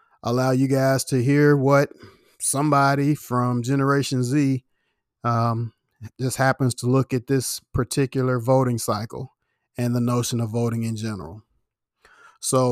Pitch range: 120-145 Hz